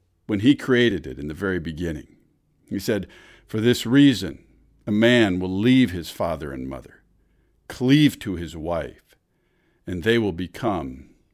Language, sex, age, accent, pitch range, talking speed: English, male, 50-69, American, 100-135 Hz, 155 wpm